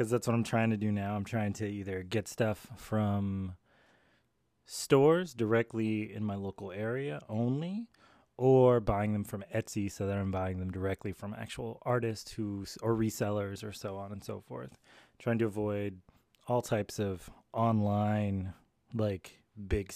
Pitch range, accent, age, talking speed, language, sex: 100-120 Hz, American, 20-39, 160 wpm, English, male